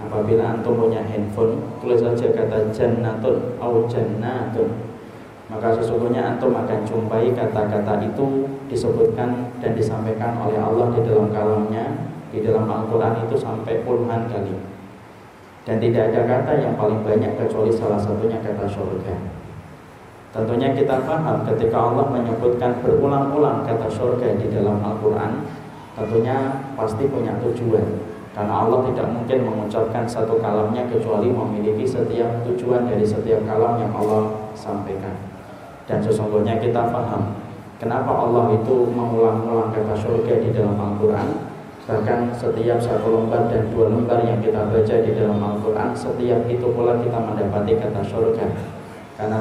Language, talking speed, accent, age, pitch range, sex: Indonesian, 130 wpm, native, 30-49, 110-120 Hz, male